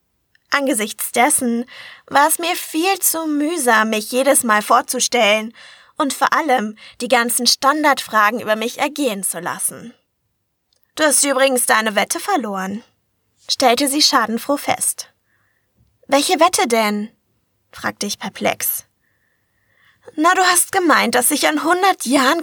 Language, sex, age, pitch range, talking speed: German, female, 20-39, 225-280 Hz, 130 wpm